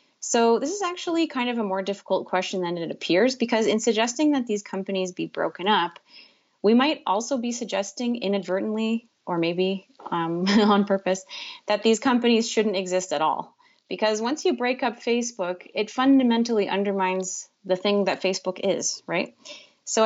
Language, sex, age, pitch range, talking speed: English, female, 30-49, 180-235 Hz, 170 wpm